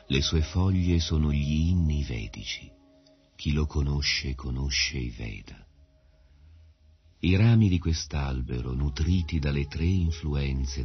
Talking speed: 115 wpm